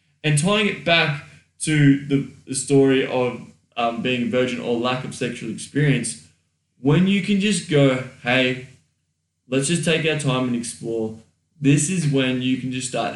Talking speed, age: 170 wpm, 10-29